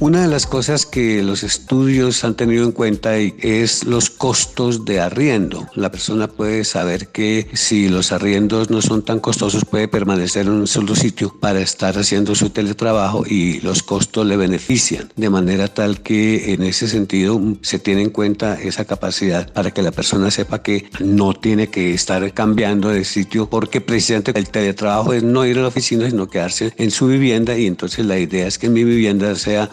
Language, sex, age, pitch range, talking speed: Spanish, male, 60-79, 100-115 Hz, 190 wpm